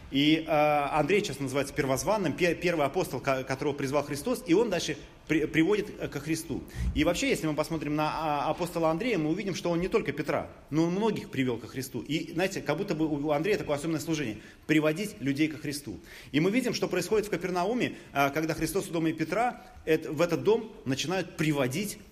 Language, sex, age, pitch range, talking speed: Russian, male, 30-49, 120-160 Hz, 190 wpm